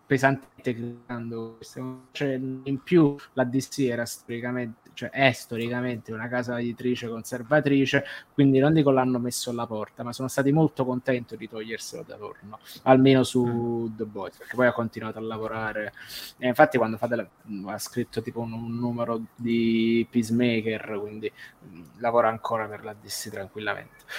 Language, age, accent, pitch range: Italian, 20-39, native, 120-140 Hz